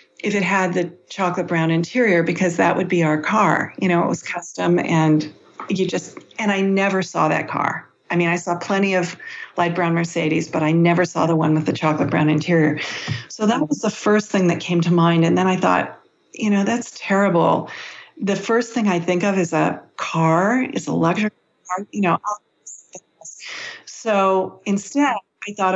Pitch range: 160-195 Hz